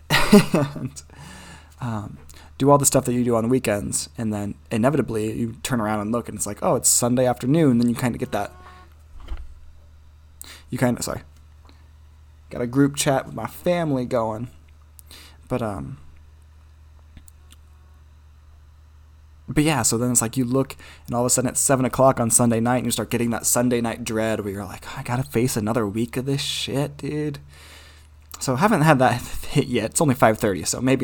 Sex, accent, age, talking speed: male, American, 20-39, 190 wpm